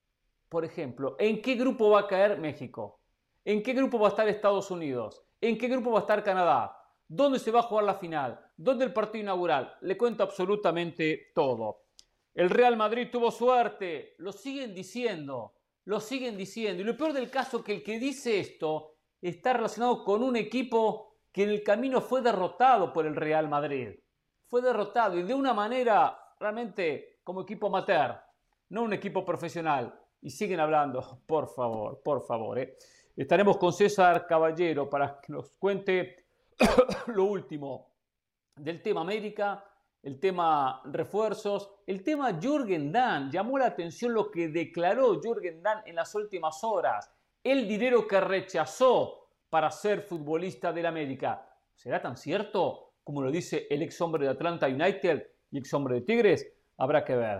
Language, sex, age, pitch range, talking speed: Spanish, male, 50-69, 165-235 Hz, 165 wpm